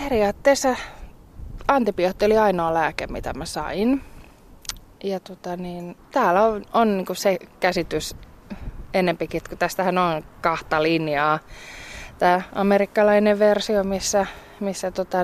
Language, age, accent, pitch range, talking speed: Finnish, 20-39, native, 170-210 Hz, 115 wpm